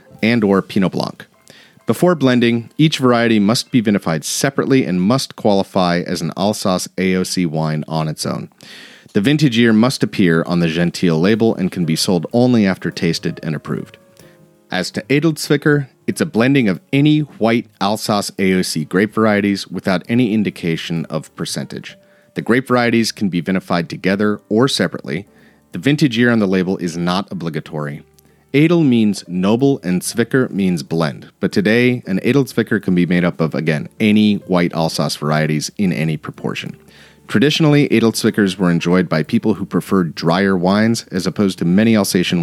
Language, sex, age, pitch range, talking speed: English, male, 40-59, 85-120 Hz, 165 wpm